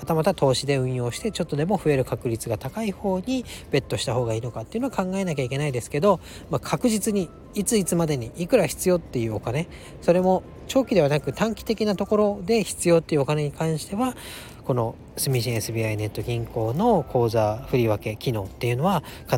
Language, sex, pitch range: Japanese, male, 115-170 Hz